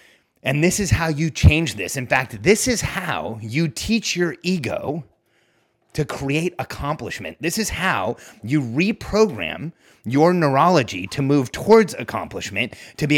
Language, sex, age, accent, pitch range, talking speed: English, male, 30-49, American, 135-180 Hz, 145 wpm